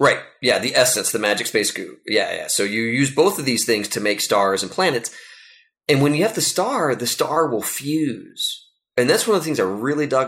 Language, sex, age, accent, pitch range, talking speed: English, male, 30-49, American, 105-160 Hz, 240 wpm